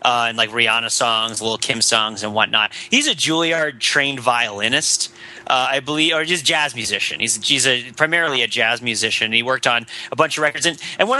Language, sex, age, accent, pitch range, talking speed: English, male, 30-49, American, 120-165 Hz, 210 wpm